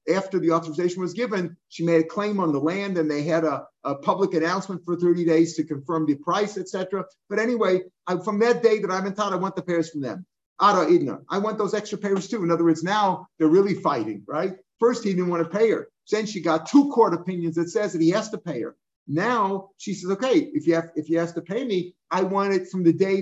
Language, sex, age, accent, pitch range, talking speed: English, male, 50-69, American, 160-195 Hz, 245 wpm